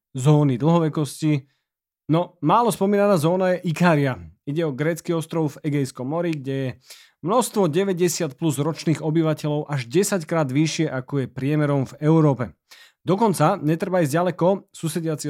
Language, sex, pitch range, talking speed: Slovak, male, 135-180 Hz, 140 wpm